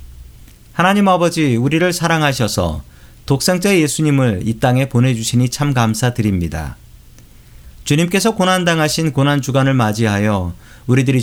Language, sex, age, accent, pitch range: Korean, male, 40-59, native, 110-150 Hz